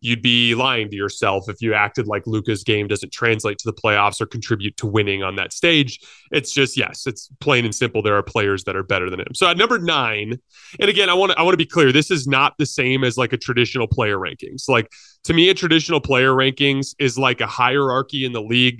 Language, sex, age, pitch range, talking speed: English, male, 20-39, 115-140 Hz, 240 wpm